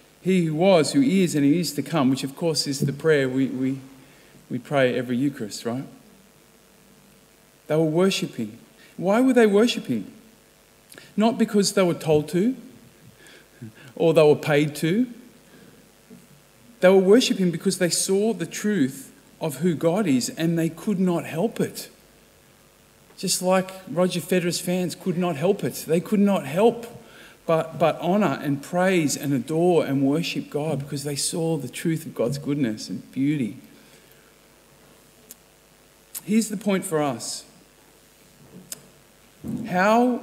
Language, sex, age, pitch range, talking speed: English, male, 50-69, 140-185 Hz, 145 wpm